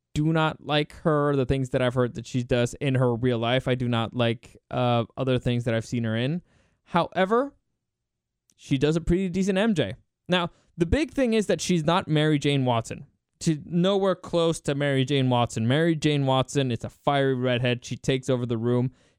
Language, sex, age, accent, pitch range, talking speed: English, male, 20-39, American, 125-170 Hz, 200 wpm